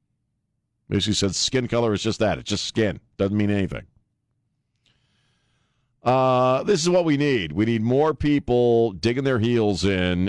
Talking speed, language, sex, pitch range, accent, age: 150 wpm, English, male, 90-125 Hz, American, 50-69